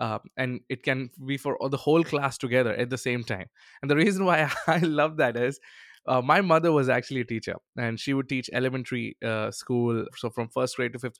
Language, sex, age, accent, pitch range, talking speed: English, male, 20-39, Indian, 120-150 Hz, 230 wpm